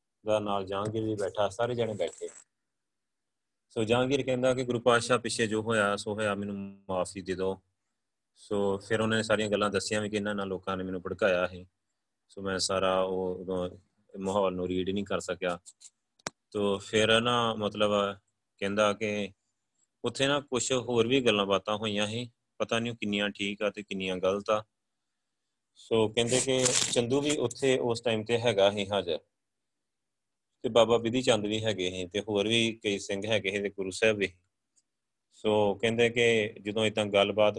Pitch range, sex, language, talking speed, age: 100-115 Hz, male, Punjabi, 170 wpm, 30-49